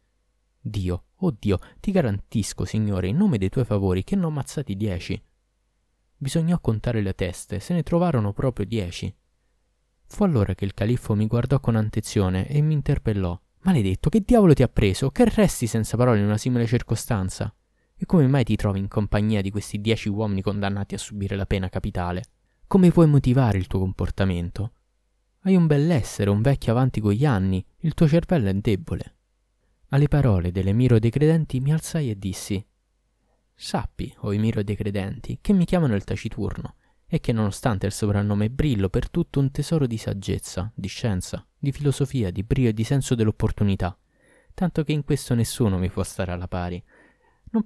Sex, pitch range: male, 100-135 Hz